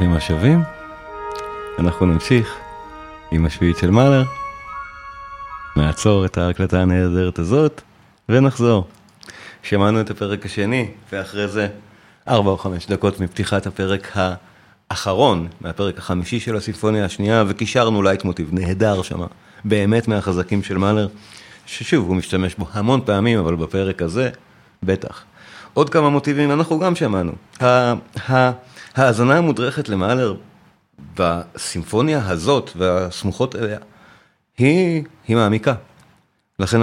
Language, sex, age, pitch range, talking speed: Hebrew, male, 30-49, 95-125 Hz, 110 wpm